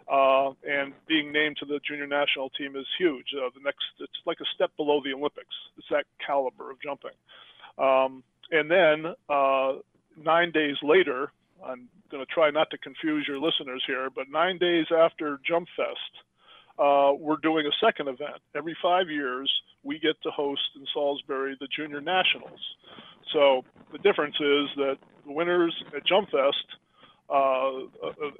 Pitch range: 140-160 Hz